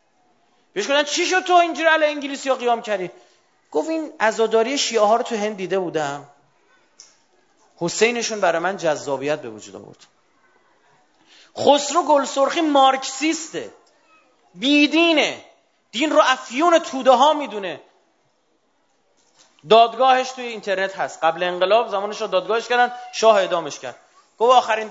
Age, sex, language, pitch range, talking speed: 30-49, male, Persian, 175-290 Hz, 130 wpm